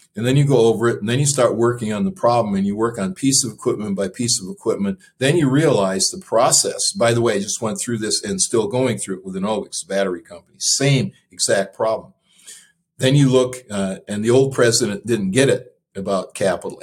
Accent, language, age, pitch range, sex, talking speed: American, English, 50-69, 105-140 Hz, male, 230 wpm